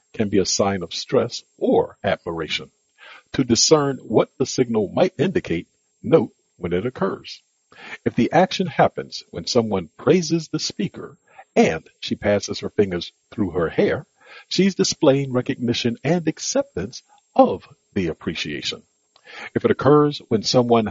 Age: 50-69